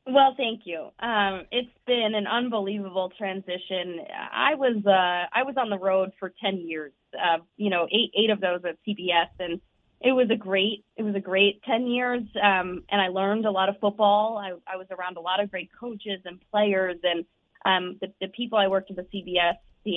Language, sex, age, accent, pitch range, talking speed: English, female, 20-39, American, 180-220 Hz, 215 wpm